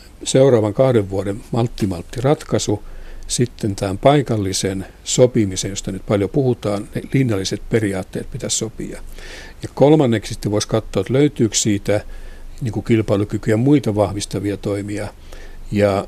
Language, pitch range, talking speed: Finnish, 100-120 Hz, 125 wpm